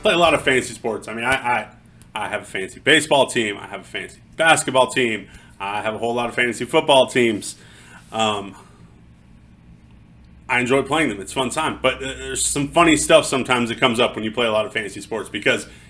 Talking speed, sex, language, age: 220 wpm, male, English, 30-49